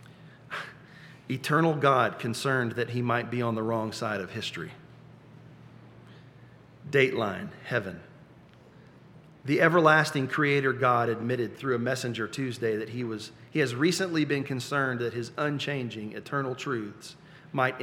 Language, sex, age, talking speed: English, male, 40-59, 125 wpm